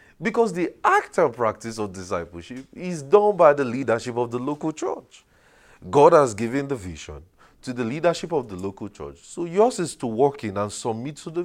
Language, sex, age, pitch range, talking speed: English, male, 30-49, 95-145 Hz, 200 wpm